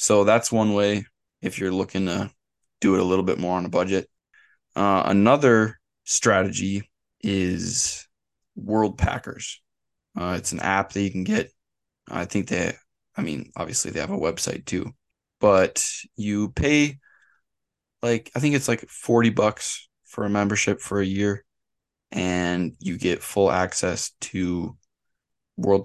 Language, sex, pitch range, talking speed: English, male, 90-110 Hz, 150 wpm